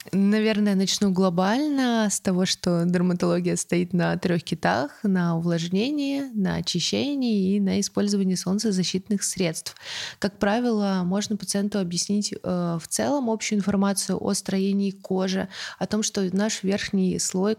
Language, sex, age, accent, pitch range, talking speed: Russian, female, 20-39, native, 180-205 Hz, 135 wpm